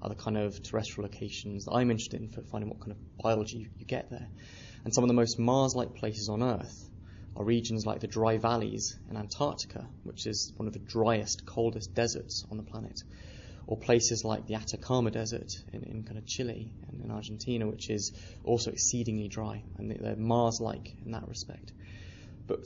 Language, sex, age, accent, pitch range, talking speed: English, male, 20-39, British, 100-115 Hz, 195 wpm